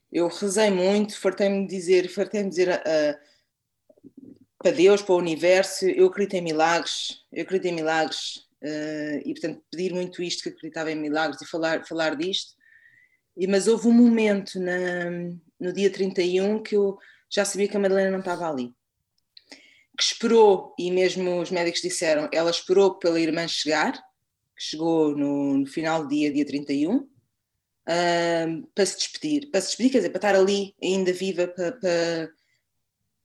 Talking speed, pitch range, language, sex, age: 155 wpm, 170-210 Hz, Portuguese, female, 20-39